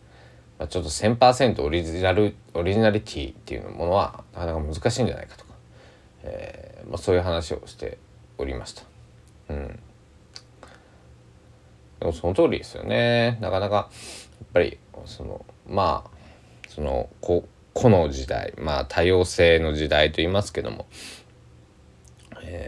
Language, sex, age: Japanese, male, 20-39